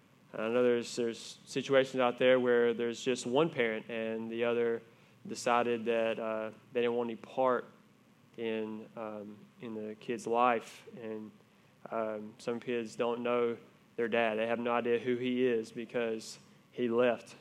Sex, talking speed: male, 160 wpm